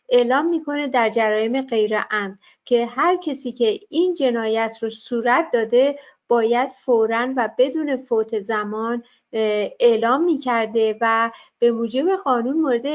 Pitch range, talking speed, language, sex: 225-270 Hz, 125 wpm, Persian, female